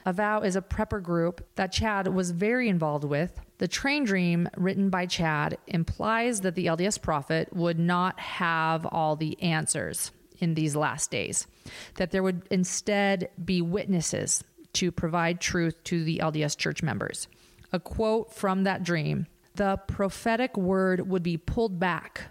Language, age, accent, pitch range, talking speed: English, 30-49, American, 170-205 Hz, 160 wpm